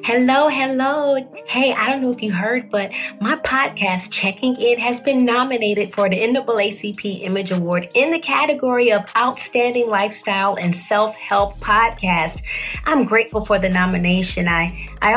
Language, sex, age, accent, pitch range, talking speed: English, female, 30-49, American, 185-240 Hz, 150 wpm